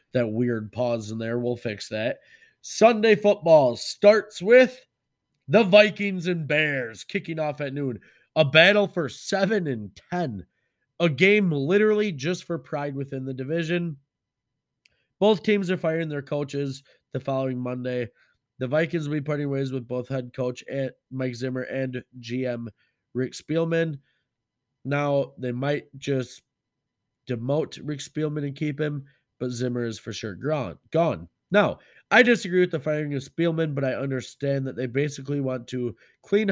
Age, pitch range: 20-39, 130-170 Hz